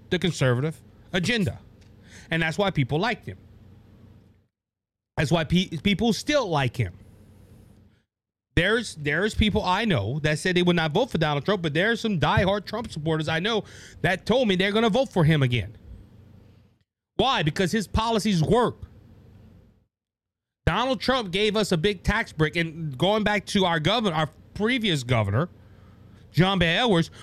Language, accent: English, American